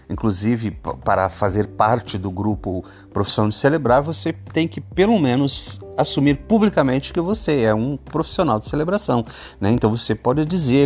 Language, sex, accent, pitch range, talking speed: Portuguese, male, Brazilian, 105-140 Hz, 160 wpm